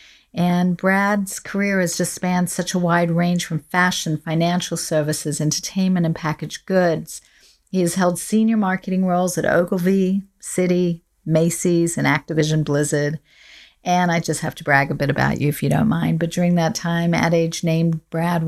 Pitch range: 160-185 Hz